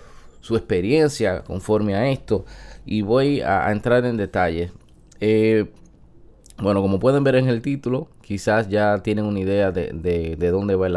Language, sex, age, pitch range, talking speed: Spanish, male, 20-39, 95-125 Hz, 165 wpm